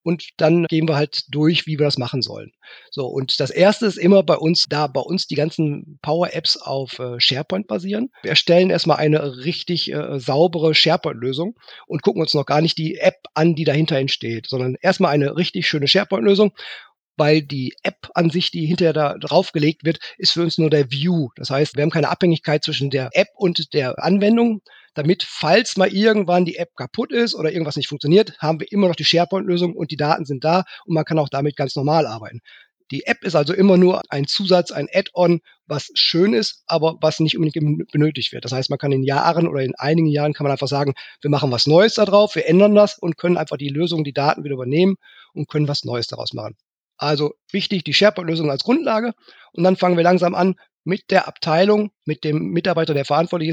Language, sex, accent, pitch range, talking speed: German, male, German, 145-180 Hz, 215 wpm